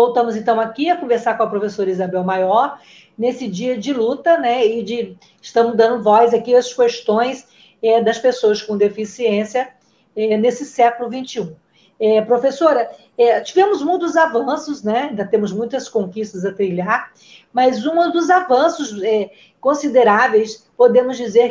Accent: Brazilian